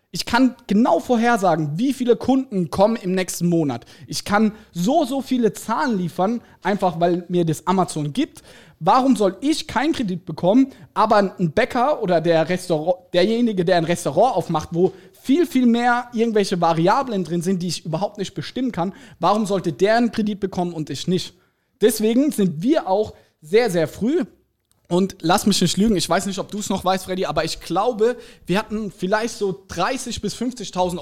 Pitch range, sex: 170-220 Hz, male